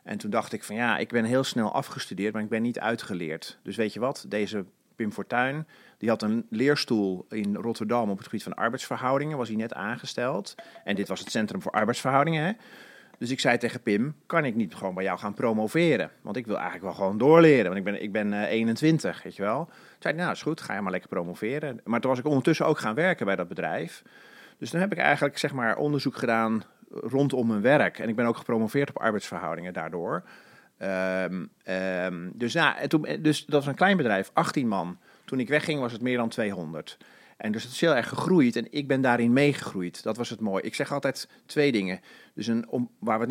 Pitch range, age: 105-145 Hz, 40-59